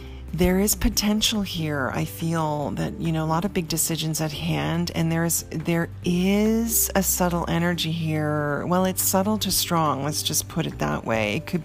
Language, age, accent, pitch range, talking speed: English, 40-59, American, 135-180 Hz, 195 wpm